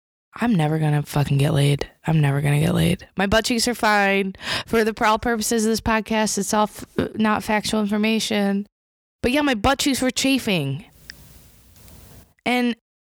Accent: American